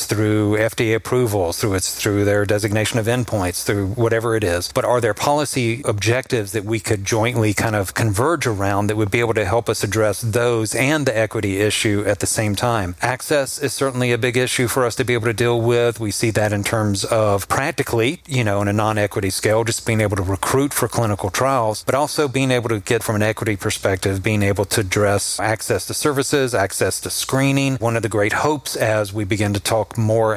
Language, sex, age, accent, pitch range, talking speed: English, male, 40-59, American, 105-125 Hz, 215 wpm